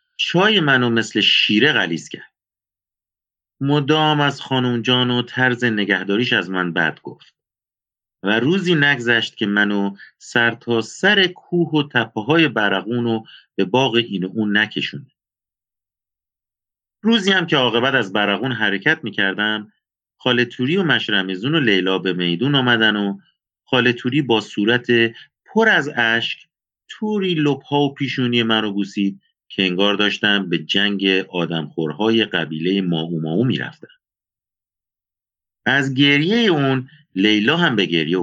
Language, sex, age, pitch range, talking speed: Persian, male, 40-59, 95-130 Hz, 130 wpm